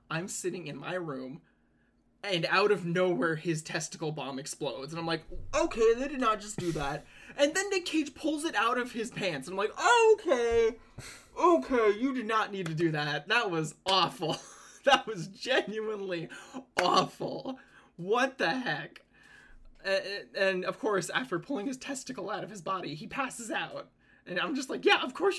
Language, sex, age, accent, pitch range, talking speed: English, male, 20-39, American, 160-265 Hz, 180 wpm